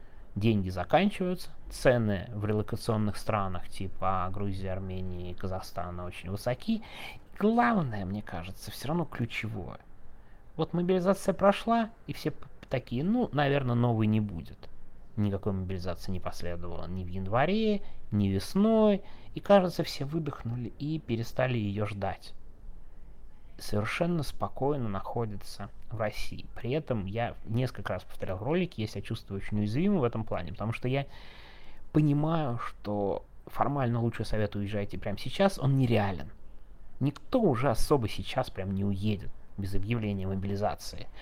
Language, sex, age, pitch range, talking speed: Russian, male, 20-39, 100-130 Hz, 135 wpm